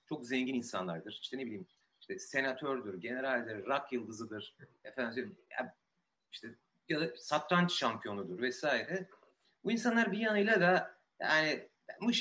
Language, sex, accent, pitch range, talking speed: Turkish, male, native, 125-185 Hz, 130 wpm